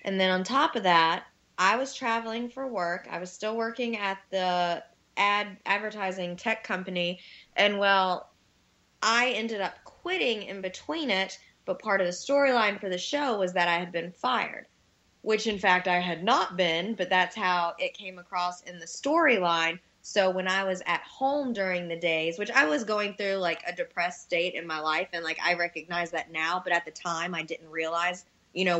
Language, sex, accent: English, female, American